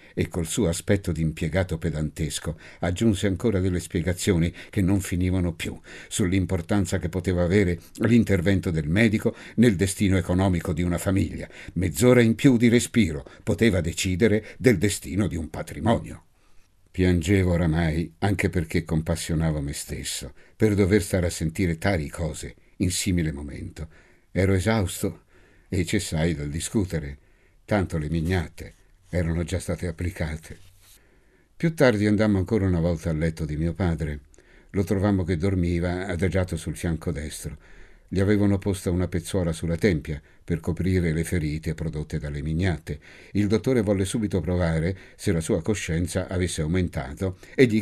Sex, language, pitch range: male, Italian, 80-100 Hz